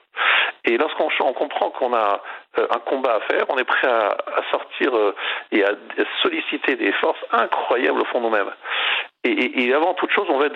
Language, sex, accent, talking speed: French, male, French, 175 wpm